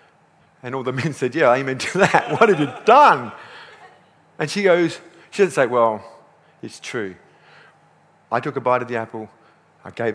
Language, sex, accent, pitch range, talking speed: English, male, British, 145-185 Hz, 190 wpm